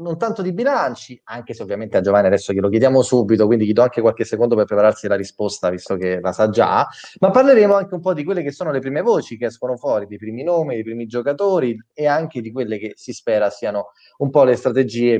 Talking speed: 240 wpm